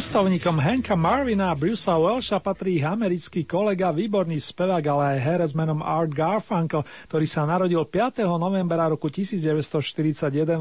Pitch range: 155-200 Hz